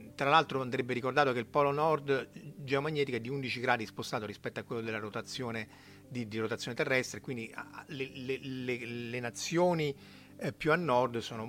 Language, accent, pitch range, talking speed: Italian, native, 115-150 Hz, 180 wpm